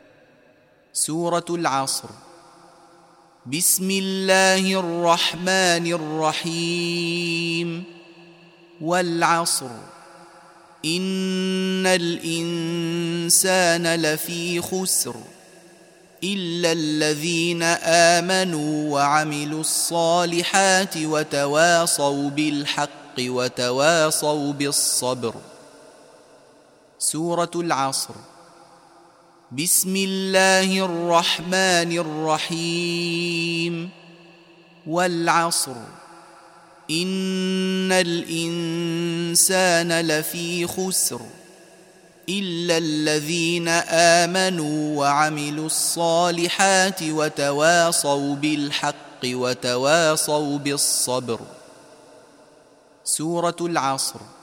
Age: 30-49